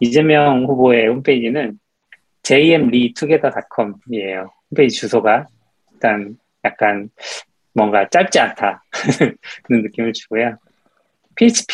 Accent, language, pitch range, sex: native, Korean, 105-150 Hz, male